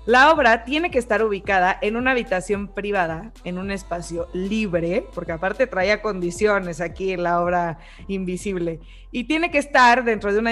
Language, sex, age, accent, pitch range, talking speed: Spanish, female, 20-39, Mexican, 185-240 Hz, 170 wpm